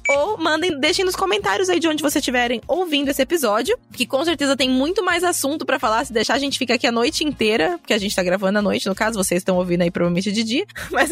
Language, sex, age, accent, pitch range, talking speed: Portuguese, female, 20-39, Brazilian, 215-290 Hz, 260 wpm